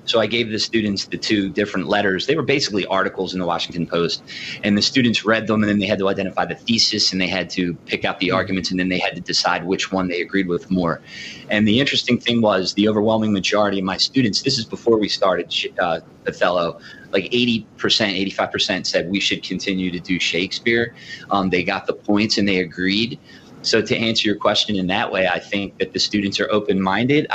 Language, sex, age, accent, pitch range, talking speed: English, male, 30-49, American, 95-115 Hz, 220 wpm